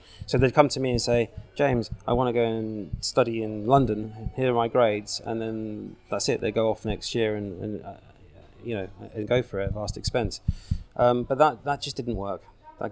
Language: English